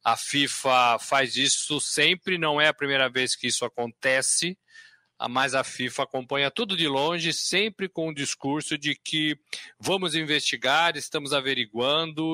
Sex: male